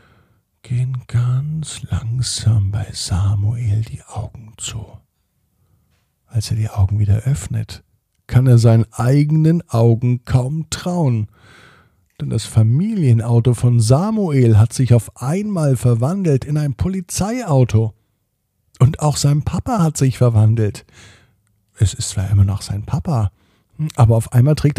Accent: German